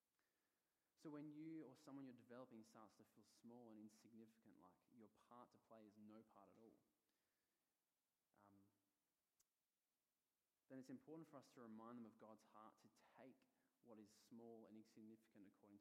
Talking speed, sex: 165 wpm, male